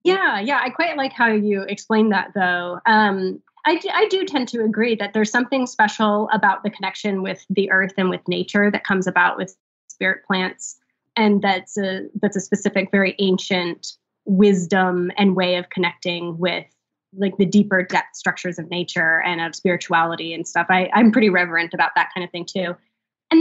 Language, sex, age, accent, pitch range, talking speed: English, female, 20-39, American, 185-230 Hz, 190 wpm